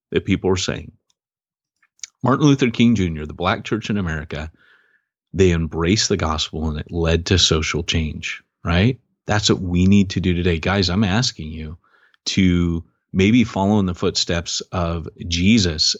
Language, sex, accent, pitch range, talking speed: English, male, American, 85-110 Hz, 160 wpm